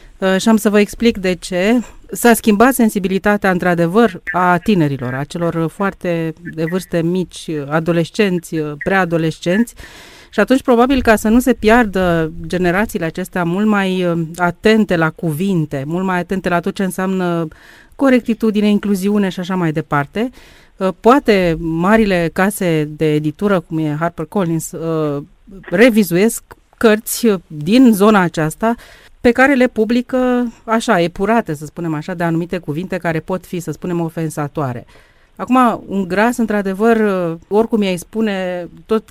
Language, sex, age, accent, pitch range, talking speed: Romanian, female, 30-49, native, 165-215 Hz, 135 wpm